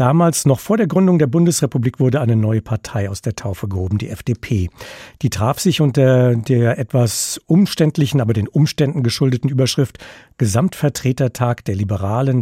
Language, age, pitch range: German, 50-69, 115-145 Hz